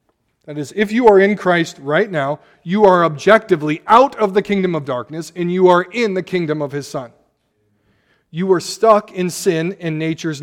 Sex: male